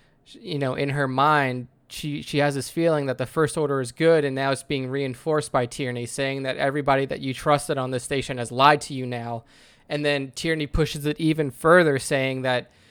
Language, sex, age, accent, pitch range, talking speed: English, male, 20-39, American, 125-155 Hz, 215 wpm